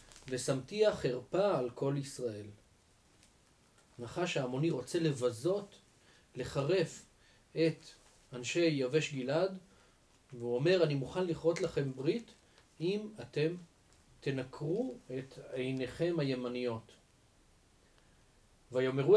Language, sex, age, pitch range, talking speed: Hebrew, male, 40-59, 125-165 Hz, 90 wpm